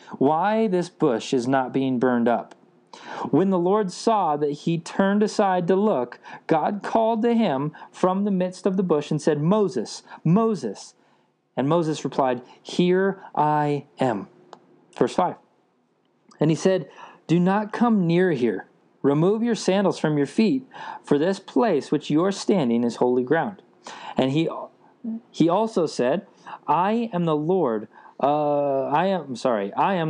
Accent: American